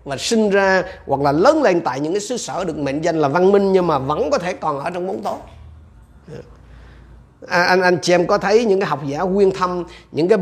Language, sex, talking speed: Vietnamese, male, 250 wpm